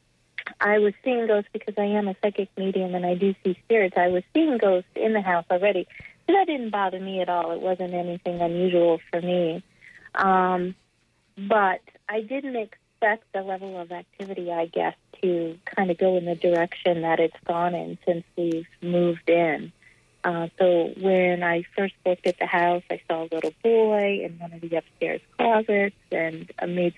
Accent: American